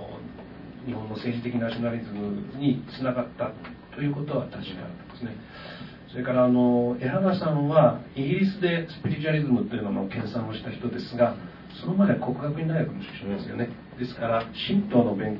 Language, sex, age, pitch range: Japanese, male, 40-59, 120-150 Hz